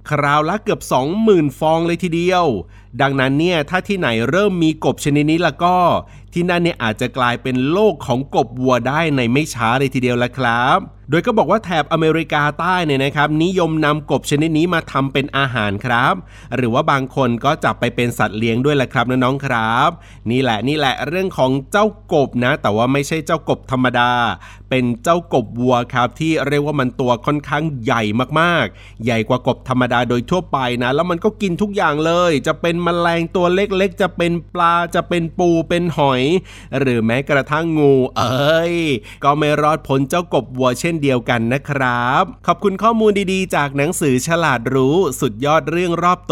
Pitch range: 125-170 Hz